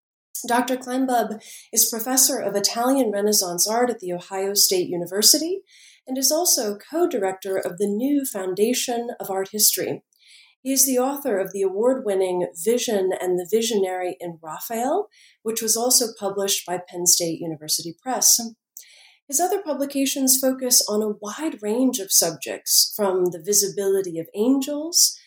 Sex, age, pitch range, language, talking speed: female, 40-59, 190-255 Hz, English, 145 wpm